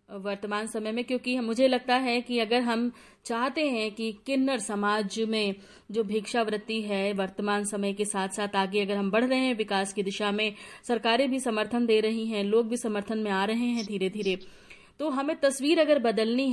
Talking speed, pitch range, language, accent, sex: 195 wpm, 205-245 Hz, Hindi, native, female